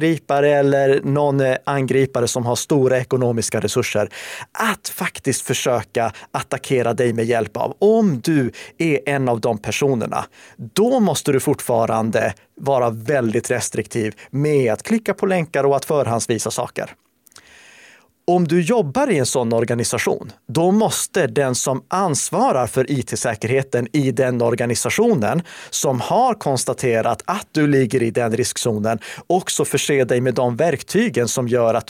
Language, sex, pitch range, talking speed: Swedish, male, 115-145 Hz, 140 wpm